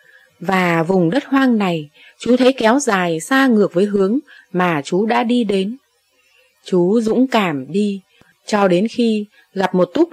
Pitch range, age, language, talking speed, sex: 170-225 Hz, 20-39, Vietnamese, 165 wpm, female